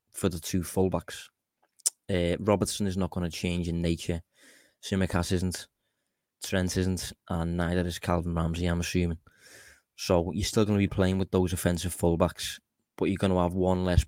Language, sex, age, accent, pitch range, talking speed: English, male, 20-39, British, 90-95 Hz, 180 wpm